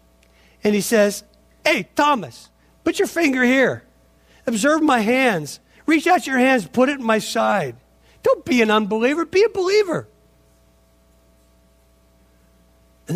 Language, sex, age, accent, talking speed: English, male, 50-69, American, 130 wpm